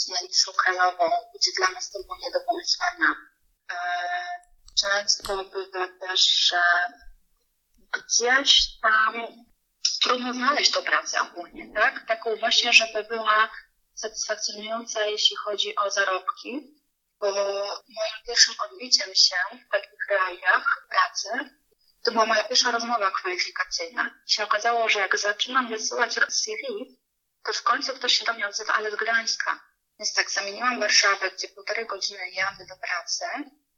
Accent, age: native, 30-49